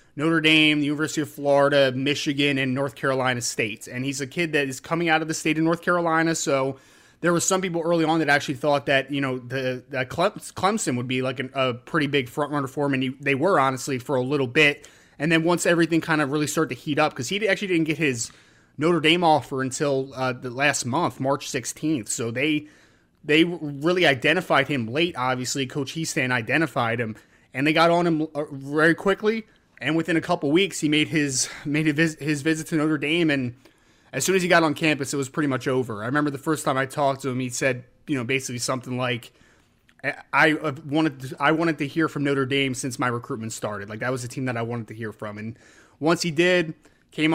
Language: English